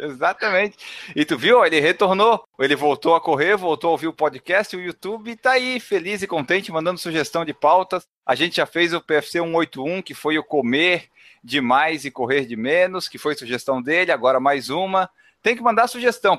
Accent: Brazilian